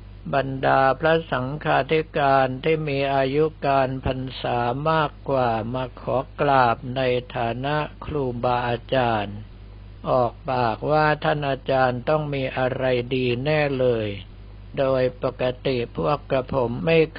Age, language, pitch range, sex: 60-79, Thai, 120-145 Hz, male